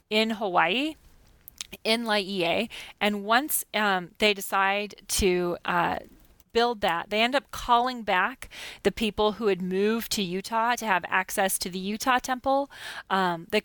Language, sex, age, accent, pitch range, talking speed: English, female, 30-49, American, 190-225 Hz, 150 wpm